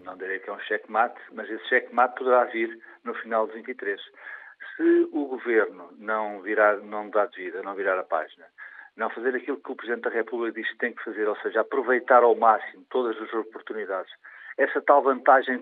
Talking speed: 200 wpm